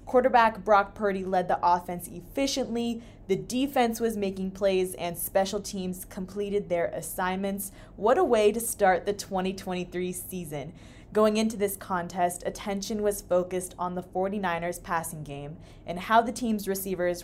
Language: English